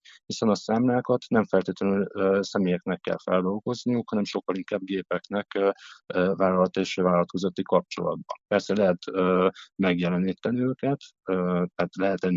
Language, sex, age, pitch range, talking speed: Hungarian, male, 50-69, 90-100 Hz, 130 wpm